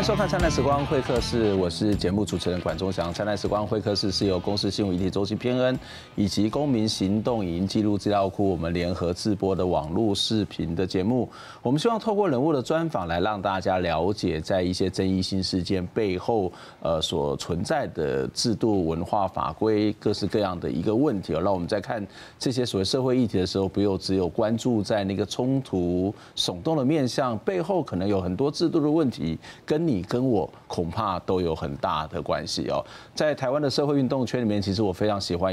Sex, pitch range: male, 95-120 Hz